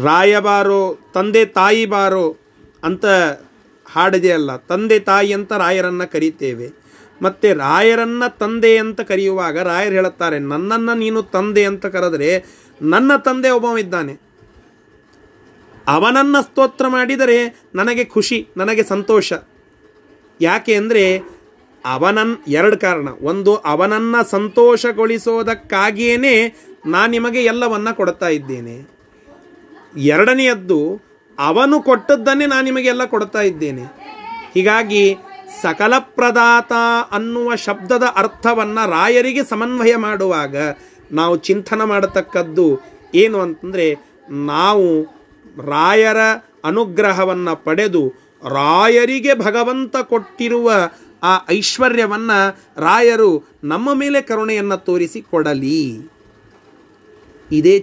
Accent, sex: native, male